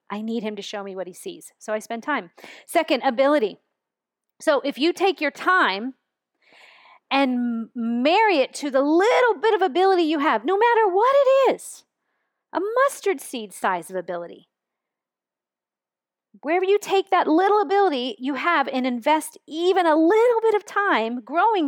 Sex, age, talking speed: female, 40-59, 165 wpm